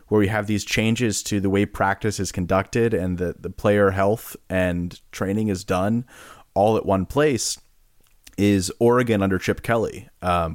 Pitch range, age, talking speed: 90-105 Hz, 30-49, 170 wpm